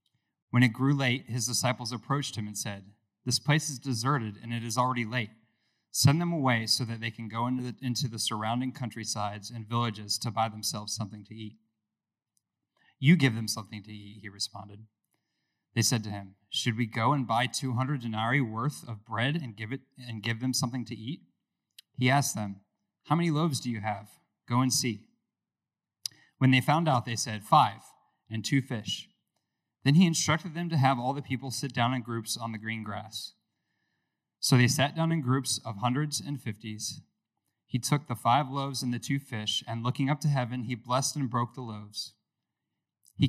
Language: English